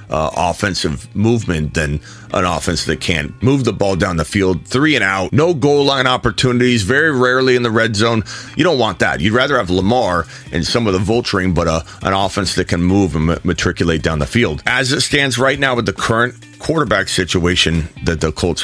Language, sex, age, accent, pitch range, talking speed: English, male, 40-59, American, 85-120 Hz, 210 wpm